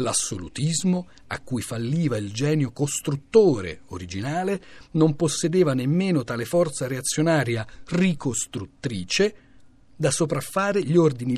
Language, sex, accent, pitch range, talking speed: Italian, male, native, 140-200 Hz, 100 wpm